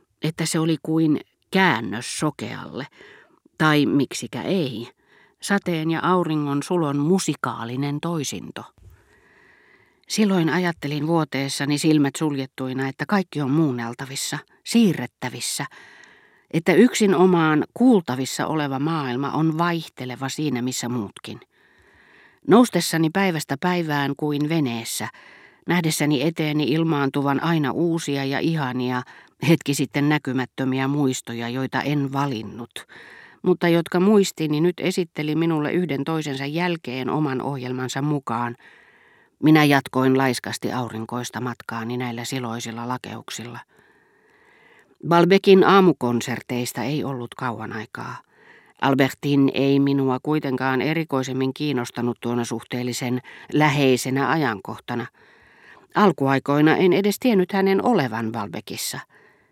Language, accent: Finnish, native